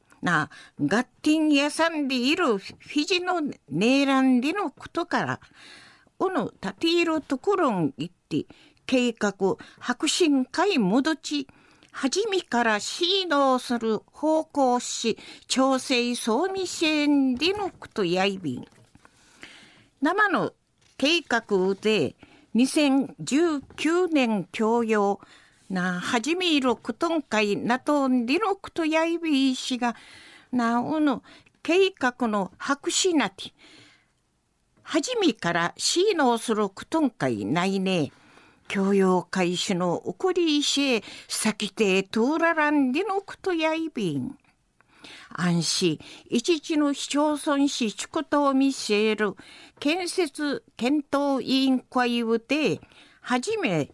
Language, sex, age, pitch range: Japanese, female, 50-69, 220-320 Hz